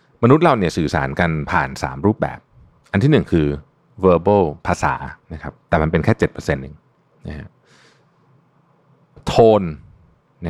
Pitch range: 80-120 Hz